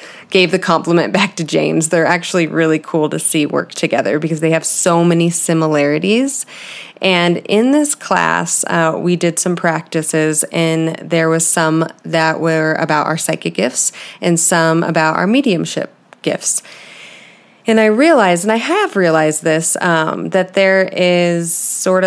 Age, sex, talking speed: 20-39, female, 160 wpm